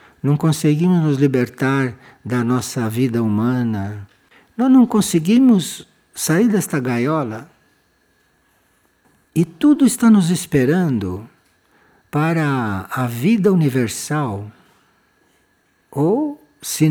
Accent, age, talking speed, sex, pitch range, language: Brazilian, 60-79, 90 wpm, male, 130-215 Hz, Portuguese